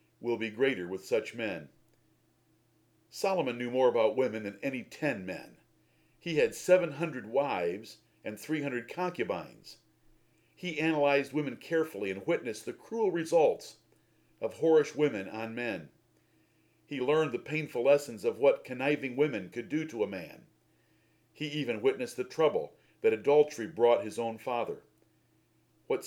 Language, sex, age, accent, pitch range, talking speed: English, male, 50-69, American, 115-160 Hz, 145 wpm